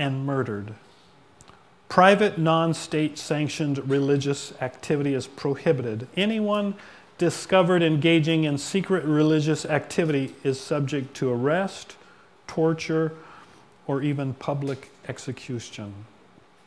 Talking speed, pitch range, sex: 90 wpm, 125-155 Hz, male